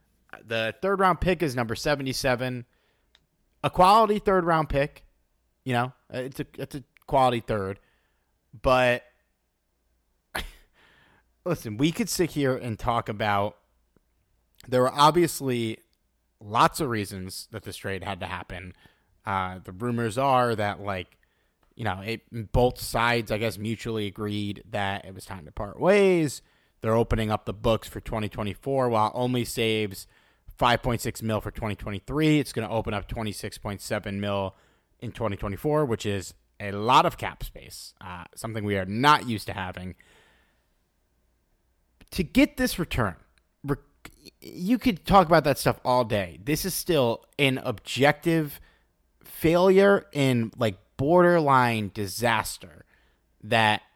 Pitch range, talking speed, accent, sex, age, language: 100-135 Hz, 140 wpm, American, male, 30-49, English